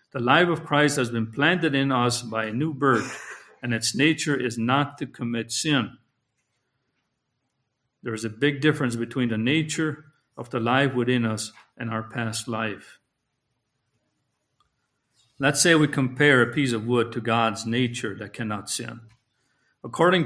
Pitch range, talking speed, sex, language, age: 115-140 Hz, 155 wpm, male, English, 50-69